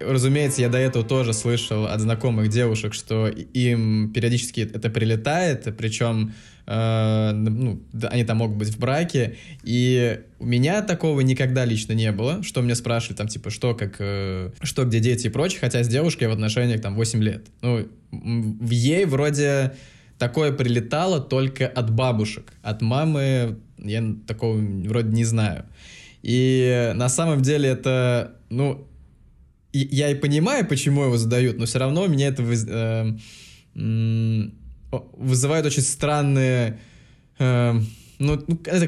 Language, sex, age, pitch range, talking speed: Russian, male, 20-39, 110-130 Hz, 145 wpm